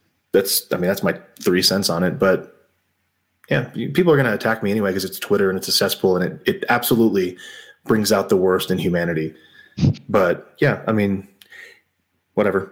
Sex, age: male, 30-49